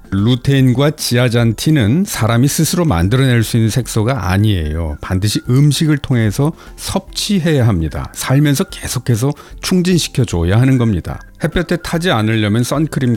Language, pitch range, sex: Korean, 95-145 Hz, male